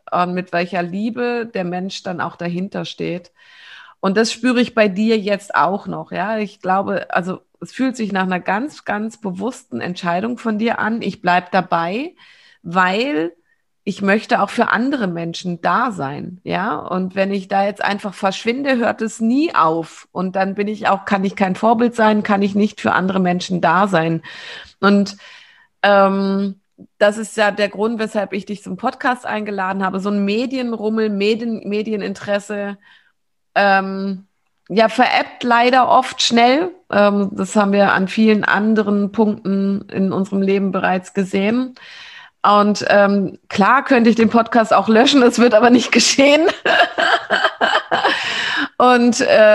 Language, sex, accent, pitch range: German, female, German, 195-230 Hz